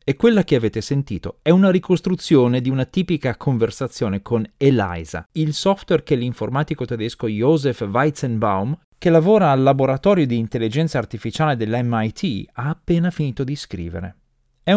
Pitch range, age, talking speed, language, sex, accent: 105-155 Hz, 30-49, 140 wpm, Italian, male, native